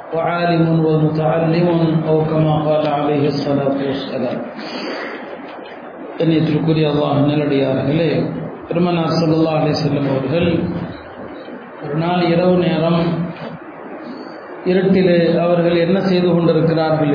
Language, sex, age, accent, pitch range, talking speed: Tamil, male, 40-59, native, 165-205 Hz, 60 wpm